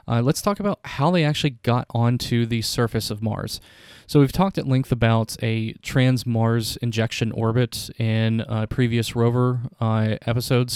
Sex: male